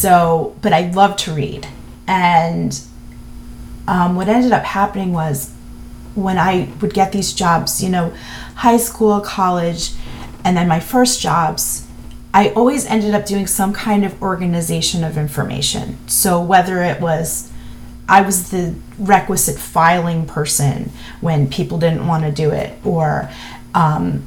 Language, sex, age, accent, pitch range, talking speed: English, female, 30-49, American, 160-200 Hz, 145 wpm